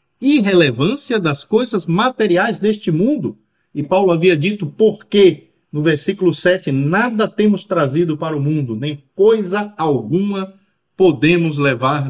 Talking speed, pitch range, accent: 125 wpm, 150-205 Hz, Brazilian